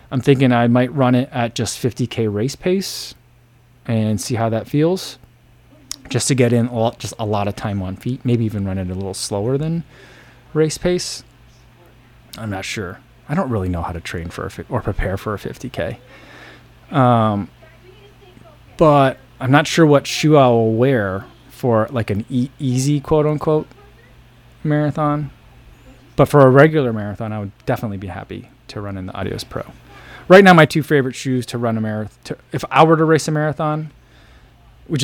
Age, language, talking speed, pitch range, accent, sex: 20-39, English, 185 wpm, 105-135 Hz, American, male